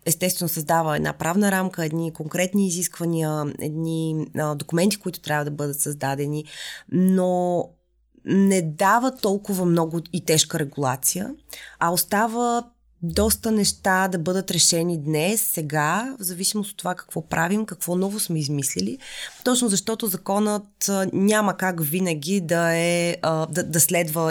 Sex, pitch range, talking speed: female, 150-185 Hz, 130 wpm